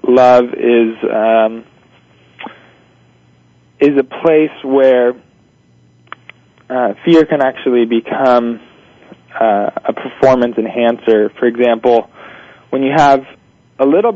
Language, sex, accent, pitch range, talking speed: English, male, American, 110-135 Hz, 100 wpm